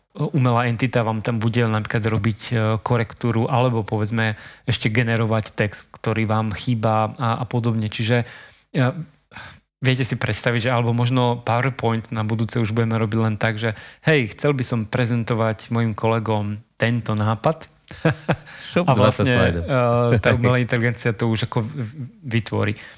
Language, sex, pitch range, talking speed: Slovak, male, 115-130 Hz, 140 wpm